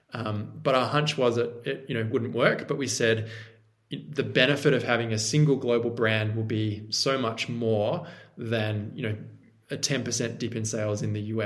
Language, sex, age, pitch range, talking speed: English, male, 20-39, 110-135 Hz, 200 wpm